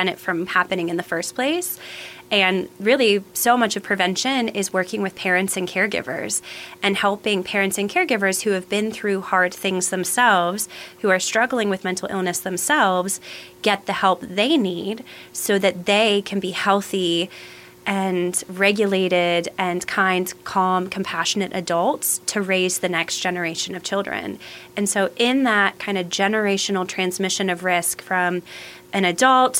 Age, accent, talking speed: 20-39, American, 155 wpm